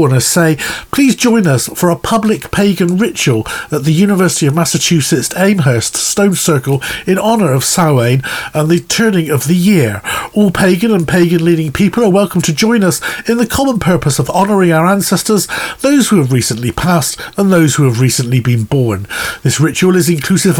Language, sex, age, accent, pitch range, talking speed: English, male, 40-59, British, 135-200 Hz, 185 wpm